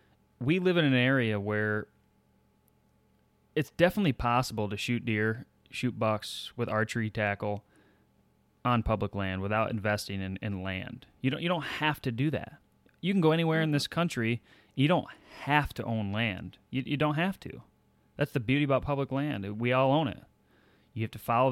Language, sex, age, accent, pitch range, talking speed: English, male, 20-39, American, 105-130 Hz, 180 wpm